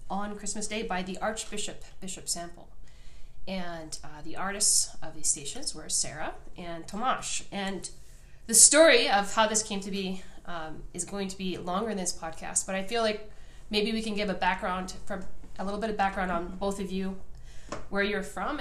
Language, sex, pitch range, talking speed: English, female, 170-210 Hz, 195 wpm